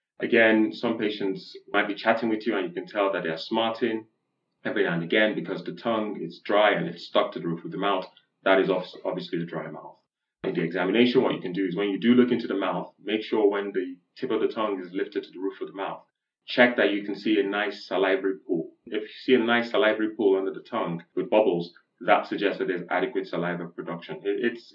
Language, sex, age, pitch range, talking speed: English, male, 30-49, 85-115 Hz, 245 wpm